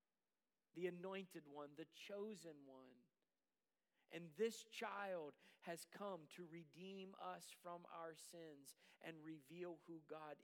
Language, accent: English, American